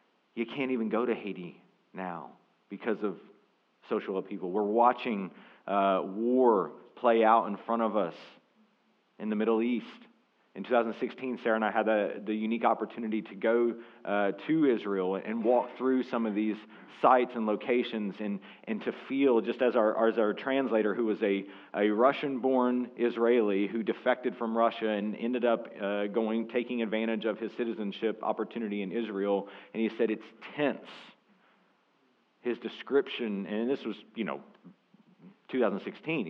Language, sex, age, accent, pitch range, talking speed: English, male, 40-59, American, 105-120 Hz, 155 wpm